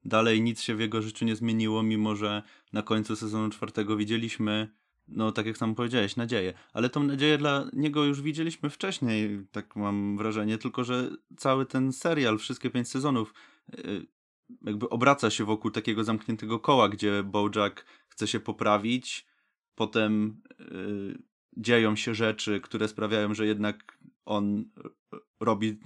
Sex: male